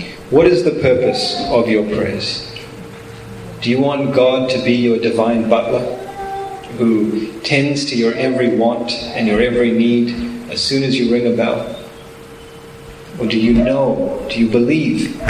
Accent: American